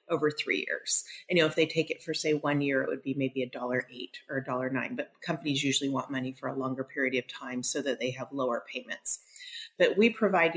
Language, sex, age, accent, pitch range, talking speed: English, female, 30-49, American, 140-185 Hz, 255 wpm